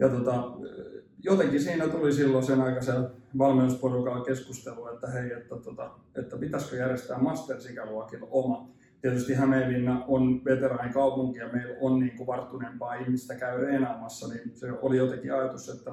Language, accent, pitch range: Finnish, native, 125-135 Hz